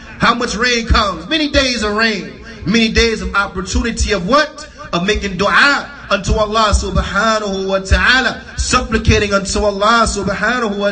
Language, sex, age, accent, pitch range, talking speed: English, male, 30-49, American, 195-225 Hz, 150 wpm